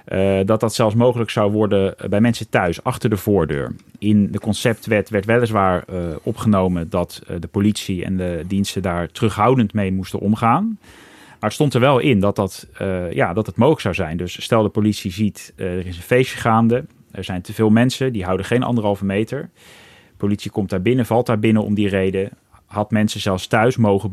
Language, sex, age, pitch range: Dutch, male, 30-49, 95-115 Hz